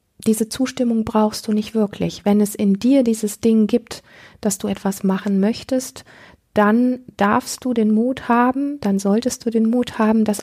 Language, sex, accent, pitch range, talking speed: German, female, German, 185-210 Hz, 180 wpm